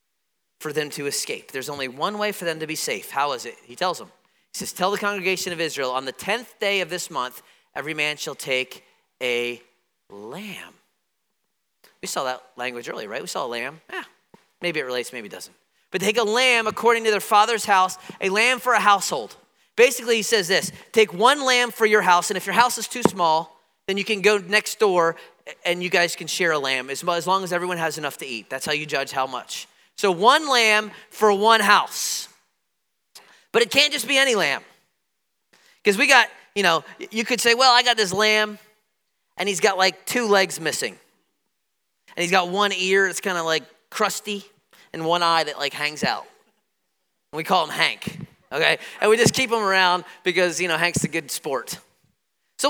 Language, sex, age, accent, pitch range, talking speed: English, male, 30-49, American, 160-215 Hz, 210 wpm